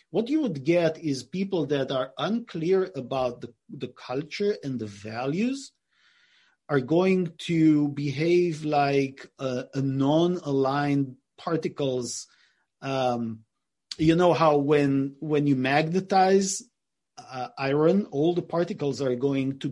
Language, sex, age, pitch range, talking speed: English, male, 40-59, 135-175 Hz, 125 wpm